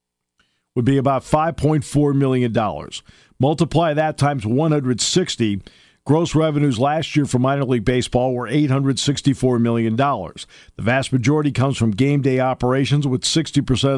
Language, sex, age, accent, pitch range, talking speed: English, male, 50-69, American, 115-150 Hz, 130 wpm